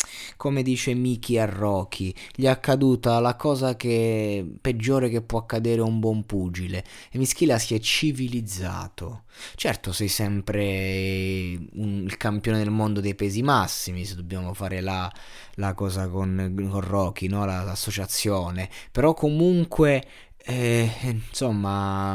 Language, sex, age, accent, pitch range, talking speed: Italian, male, 20-39, native, 95-130 Hz, 135 wpm